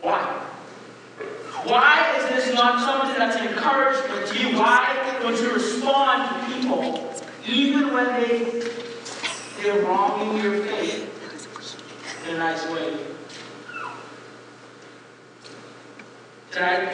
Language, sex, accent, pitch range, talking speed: English, male, American, 175-235 Hz, 105 wpm